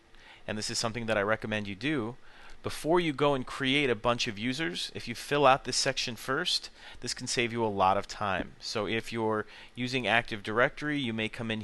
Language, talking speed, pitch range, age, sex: English, 220 wpm, 105-125 Hz, 30-49, male